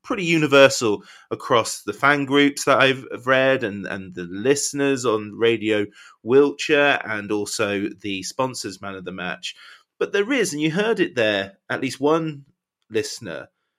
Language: English